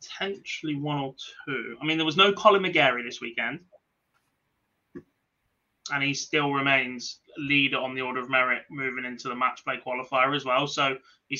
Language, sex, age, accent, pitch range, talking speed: English, male, 20-39, British, 130-155 Hz, 175 wpm